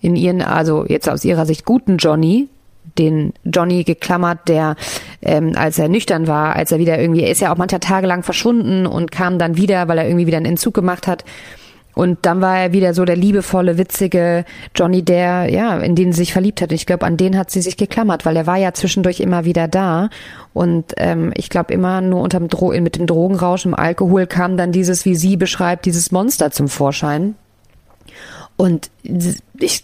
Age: 30-49